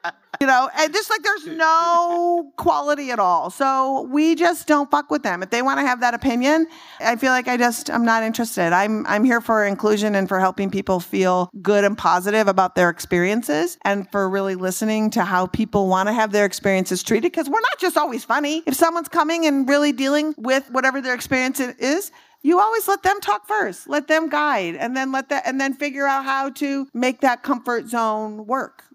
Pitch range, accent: 205-295 Hz, American